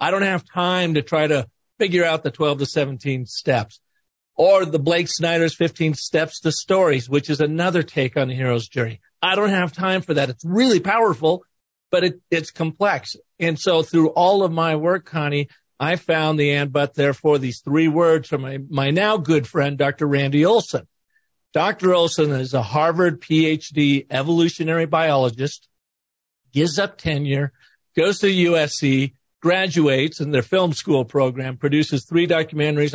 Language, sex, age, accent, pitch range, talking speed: English, male, 50-69, American, 140-170 Hz, 165 wpm